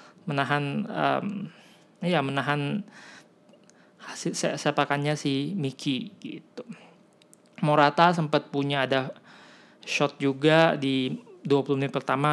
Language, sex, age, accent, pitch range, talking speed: Indonesian, male, 20-39, native, 140-185 Hz, 90 wpm